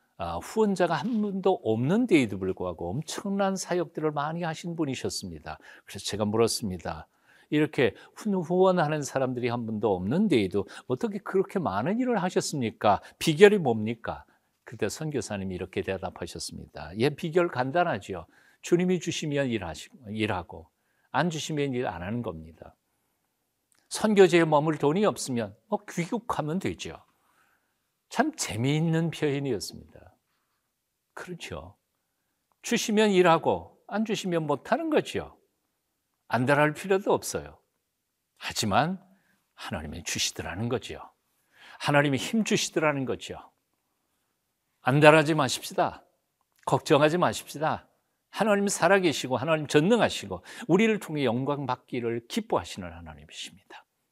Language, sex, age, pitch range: Korean, male, 50-69, 115-185 Hz